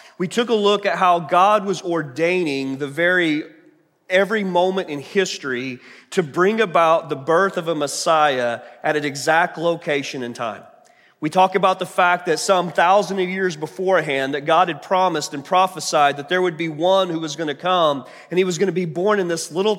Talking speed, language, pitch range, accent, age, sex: 200 wpm, English, 150-190 Hz, American, 30-49, male